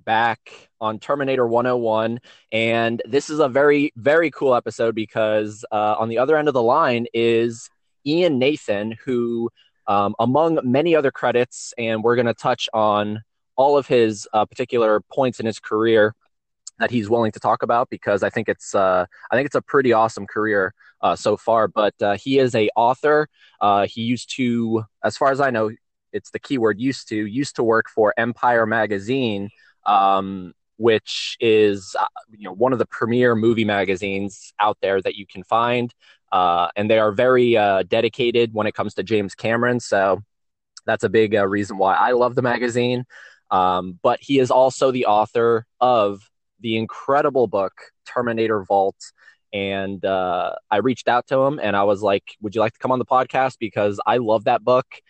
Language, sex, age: English, male, 20-39